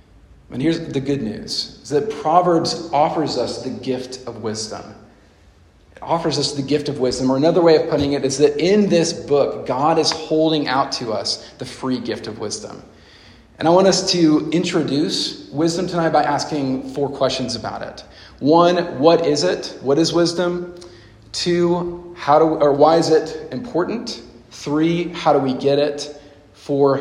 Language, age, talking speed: English, 40-59, 180 wpm